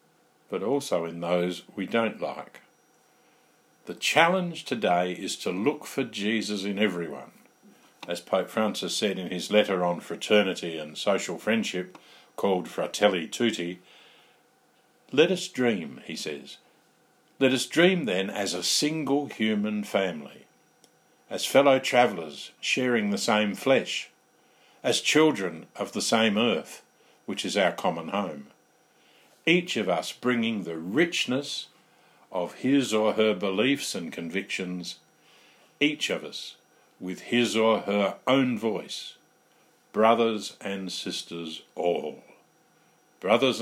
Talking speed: 125 wpm